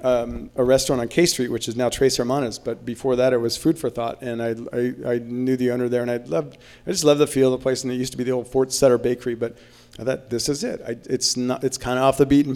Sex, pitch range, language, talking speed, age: male, 120-130 Hz, English, 300 wpm, 40-59